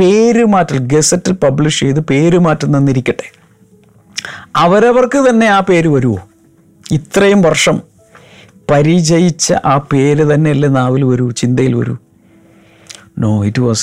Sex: male